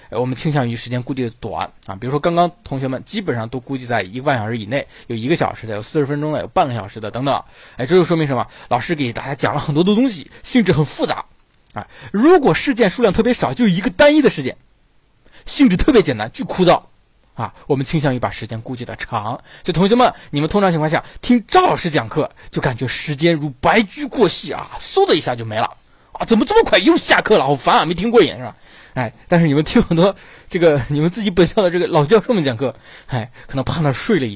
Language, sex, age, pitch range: Chinese, male, 20-39, 125-185 Hz